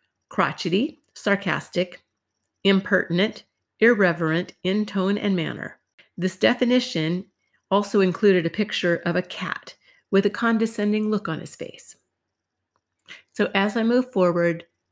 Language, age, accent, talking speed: English, 50-69, American, 115 wpm